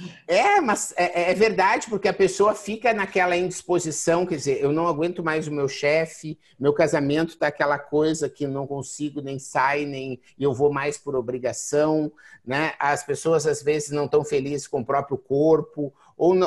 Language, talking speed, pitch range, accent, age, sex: Portuguese, 180 wpm, 135-175 Hz, Brazilian, 50-69, male